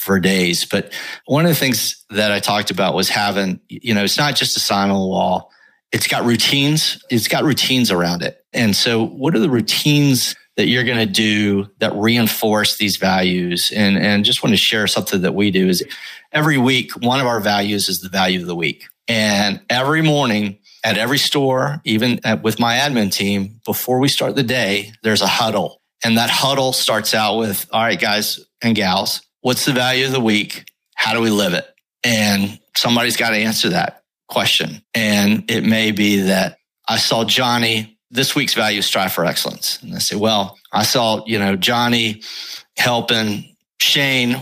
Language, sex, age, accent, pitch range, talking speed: English, male, 40-59, American, 100-125 Hz, 195 wpm